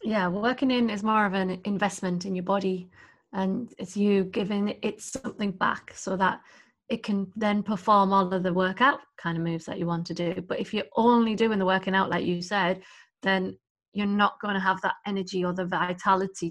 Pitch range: 185-230 Hz